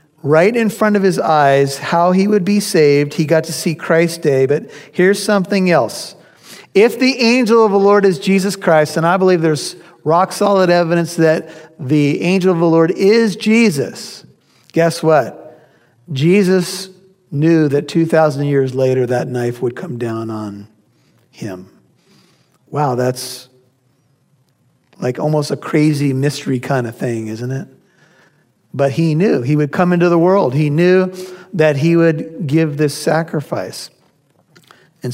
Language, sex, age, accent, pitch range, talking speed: English, male, 50-69, American, 150-185 Hz, 150 wpm